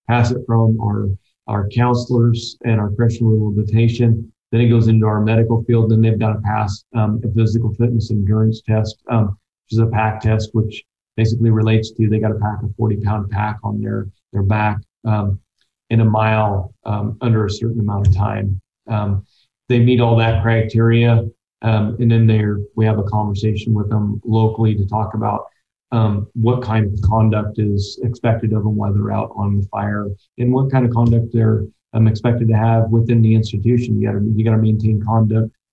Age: 40-59